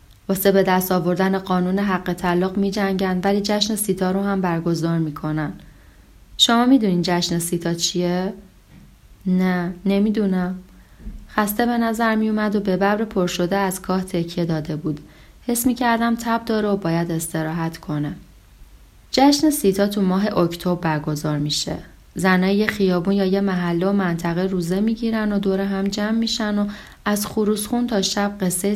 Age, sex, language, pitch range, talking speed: 30-49, female, Persian, 175-210 Hz, 145 wpm